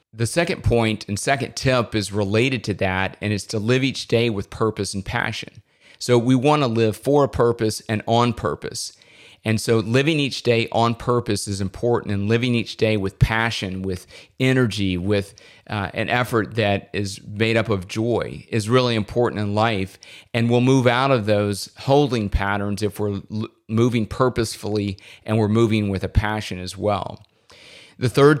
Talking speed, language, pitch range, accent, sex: 180 wpm, English, 105-120 Hz, American, male